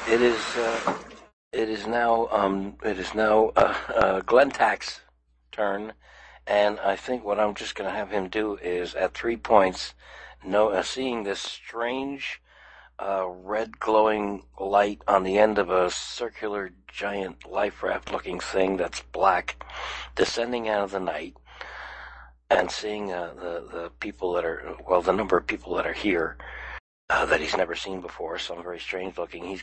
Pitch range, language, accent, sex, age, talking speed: 85-110 Hz, English, American, male, 60-79, 170 wpm